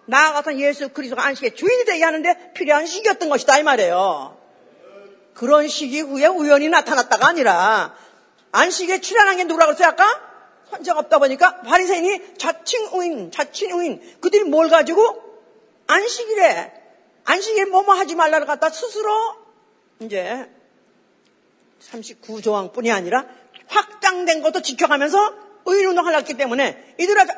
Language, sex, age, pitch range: Korean, female, 40-59, 240-350 Hz